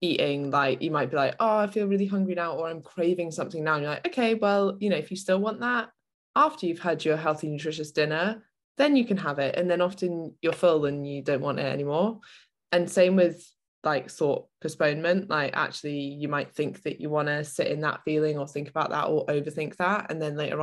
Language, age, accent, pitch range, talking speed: English, 20-39, British, 140-180 Hz, 235 wpm